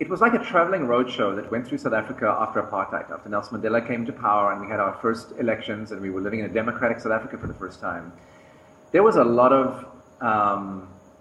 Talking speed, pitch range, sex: 235 wpm, 100-135 Hz, male